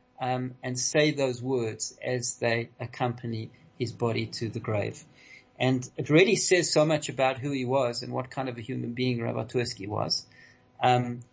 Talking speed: 185 wpm